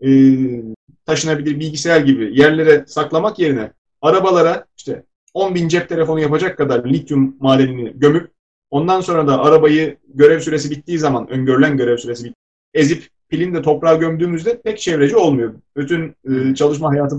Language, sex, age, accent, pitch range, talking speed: Turkish, male, 30-49, native, 125-155 Hz, 140 wpm